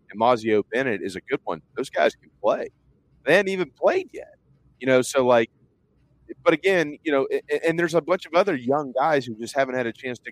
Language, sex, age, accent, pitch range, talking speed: English, male, 30-49, American, 100-130 Hz, 240 wpm